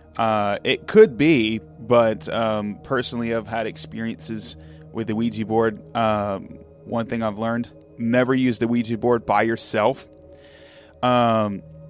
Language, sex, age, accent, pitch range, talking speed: English, male, 30-49, American, 110-130 Hz, 135 wpm